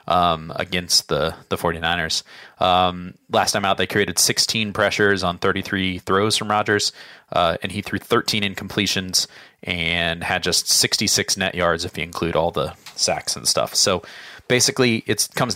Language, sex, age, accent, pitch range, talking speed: English, male, 20-39, American, 95-110 Hz, 160 wpm